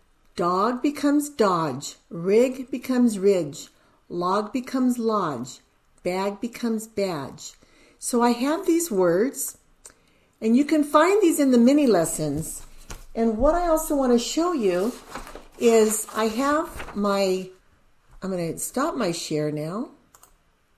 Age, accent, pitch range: 50-69, American, 200-280 Hz